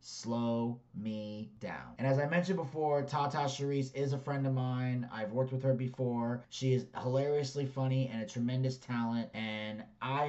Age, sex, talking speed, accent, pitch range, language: 30-49, male, 175 wpm, American, 120-145 Hz, English